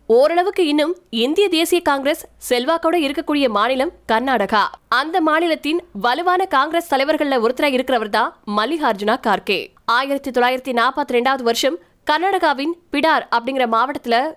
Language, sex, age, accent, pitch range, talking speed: Tamil, female, 20-39, native, 235-305 Hz, 50 wpm